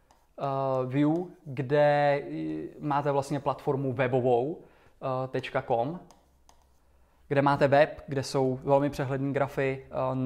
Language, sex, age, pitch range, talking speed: Czech, male, 20-39, 130-165 Hz, 95 wpm